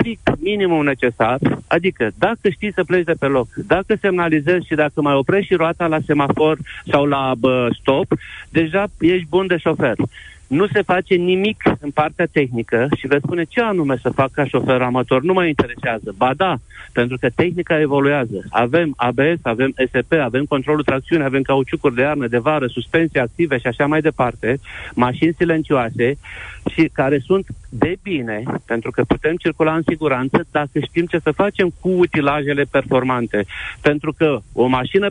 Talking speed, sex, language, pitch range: 170 wpm, male, Romanian, 135-175 Hz